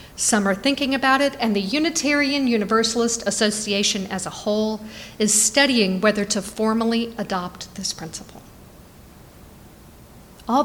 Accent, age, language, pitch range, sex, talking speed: American, 50-69, English, 205-265 Hz, female, 125 wpm